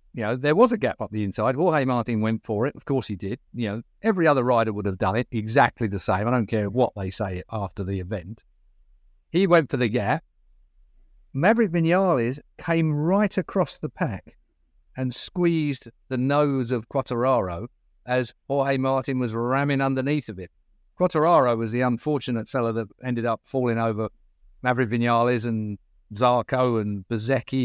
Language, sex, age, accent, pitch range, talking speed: English, male, 50-69, British, 110-150 Hz, 175 wpm